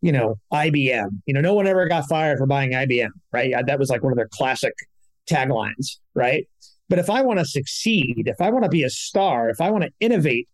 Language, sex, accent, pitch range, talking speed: English, male, American, 140-175 Hz, 235 wpm